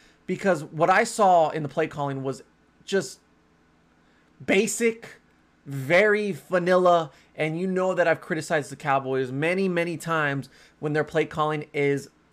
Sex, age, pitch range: male, 30-49, 140-170 Hz